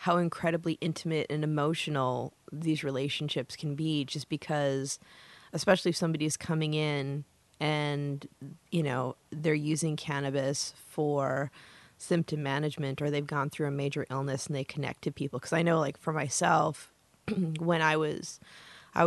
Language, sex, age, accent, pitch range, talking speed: English, female, 20-39, American, 145-165 Hz, 150 wpm